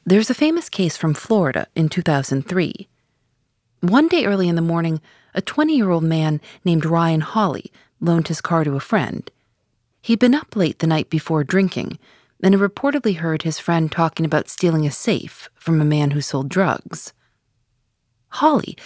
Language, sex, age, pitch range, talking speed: English, female, 40-59, 140-195 Hz, 165 wpm